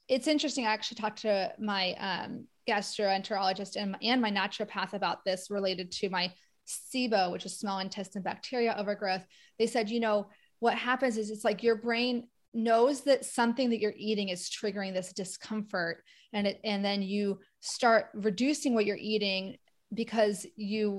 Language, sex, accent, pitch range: English, female, American, 200-240 Hz